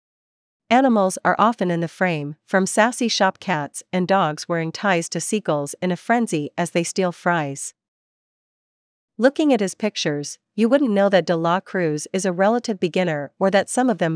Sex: female